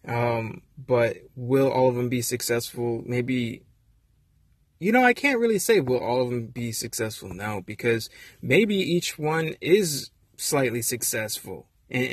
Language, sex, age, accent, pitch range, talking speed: English, male, 20-39, American, 110-130 Hz, 150 wpm